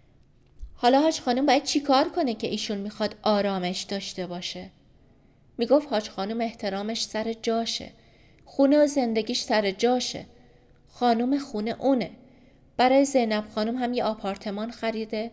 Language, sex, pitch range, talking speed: Persian, female, 215-280 Hz, 135 wpm